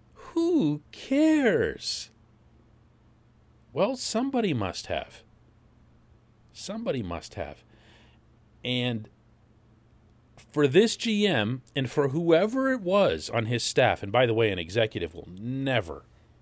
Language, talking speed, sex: English, 105 wpm, male